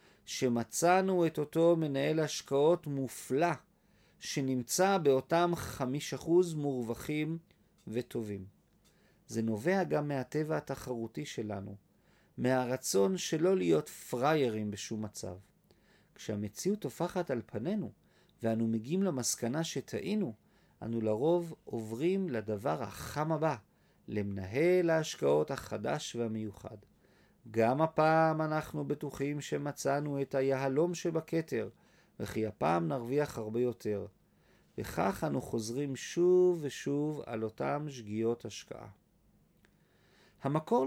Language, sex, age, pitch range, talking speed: Hebrew, male, 40-59, 115-165 Hz, 95 wpm